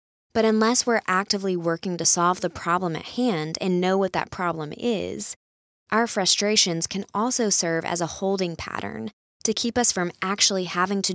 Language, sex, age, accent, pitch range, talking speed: English, female, 20-39, American, 175-220 Hz, 180 wpm